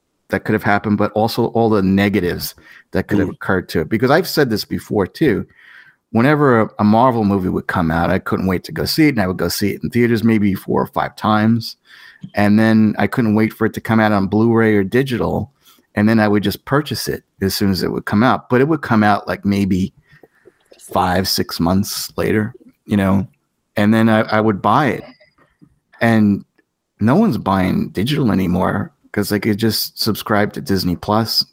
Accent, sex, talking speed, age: American, male, 210 wpm, 30-49